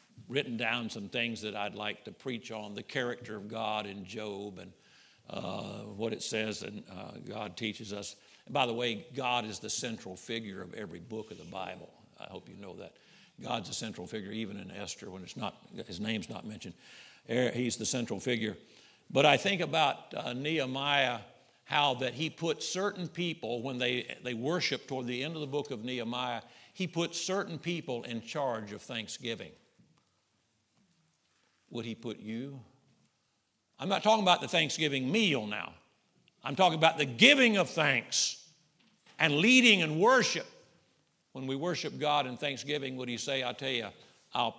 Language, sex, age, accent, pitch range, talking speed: English, male, 60-79, American, 110-150 Hz, 175 wpm